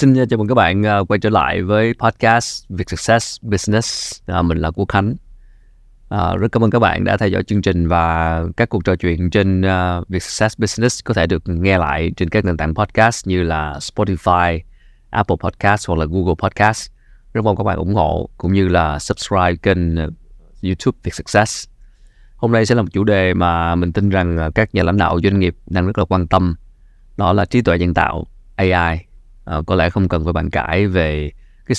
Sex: male